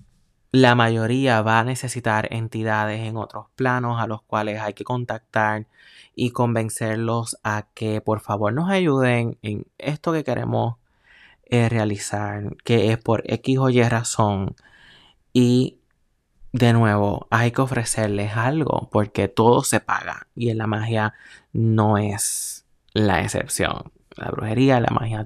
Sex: male